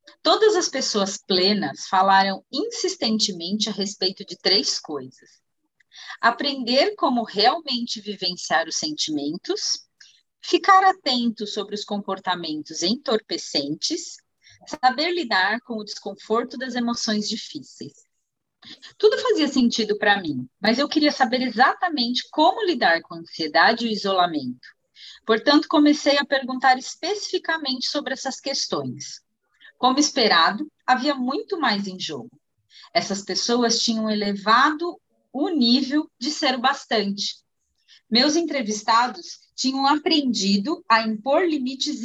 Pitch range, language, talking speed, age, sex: 205-295 Hz, Portuguese, 115 wpm, 30-49, female